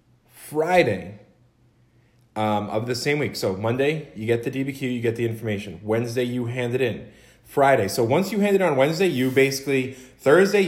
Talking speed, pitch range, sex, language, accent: 180 wpm, 115-145 Hz, male, English, American